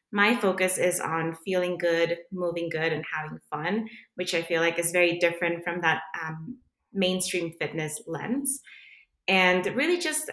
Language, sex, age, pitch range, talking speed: English, female, 20-39, 160-185 Hz, 155 wpm